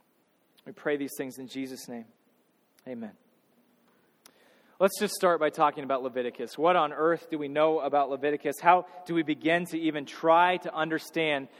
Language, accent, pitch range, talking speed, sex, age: English, American, 155-185 Hz, 165 wpm, male, 30-49